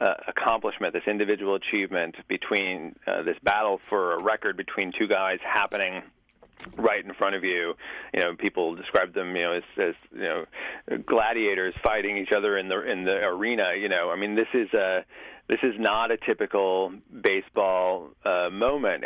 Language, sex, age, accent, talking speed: English, male, 30-49, American, 175 wpm